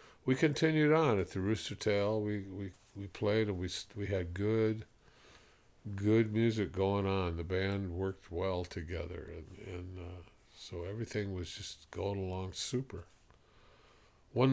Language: English